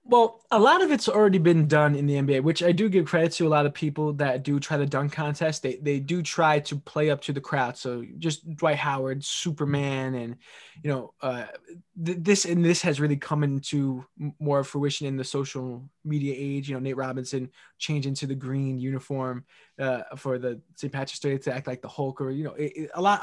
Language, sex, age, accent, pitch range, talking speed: English, male, 20-39, American, 140-180 Hz, 220 wpm